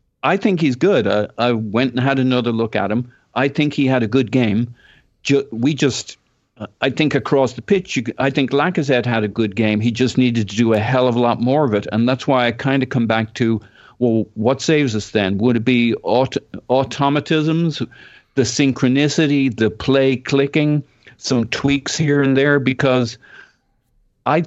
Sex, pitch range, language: male, 110-130 Hz, English